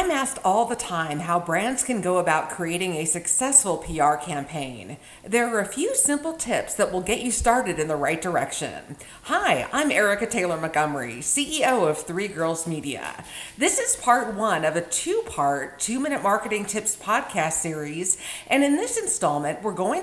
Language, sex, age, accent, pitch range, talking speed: English, female, 50-69, American, 165-245 Hz, 170 wpm